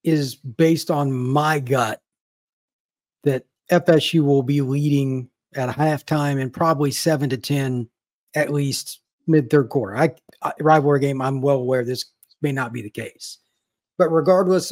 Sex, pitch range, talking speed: male, 135-165 Hz, 145 wpm